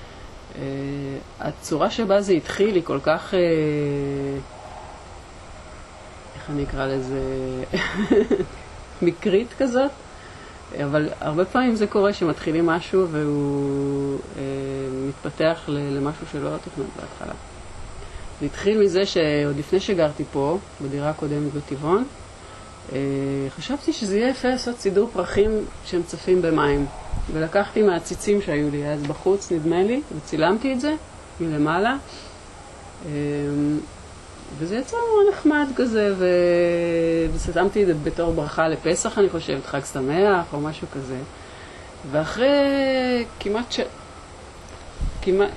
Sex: female